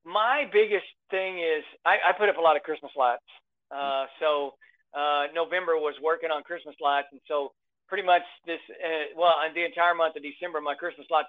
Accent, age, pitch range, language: American, 50-69, 145-170 Hz, English